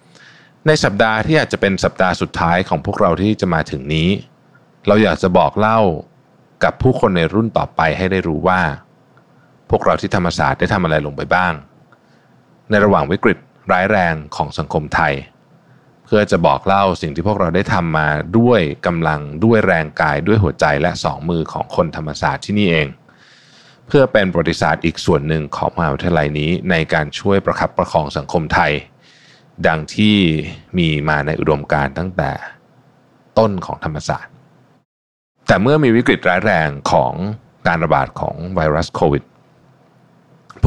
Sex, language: male, Thai